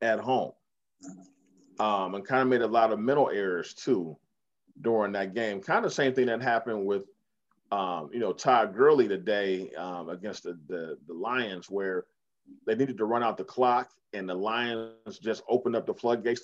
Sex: male